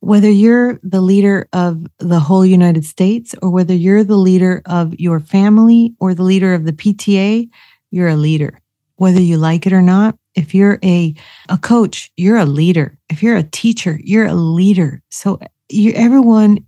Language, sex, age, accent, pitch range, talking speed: English, female, 40-59, American, 170-210 Hz, 180 wpm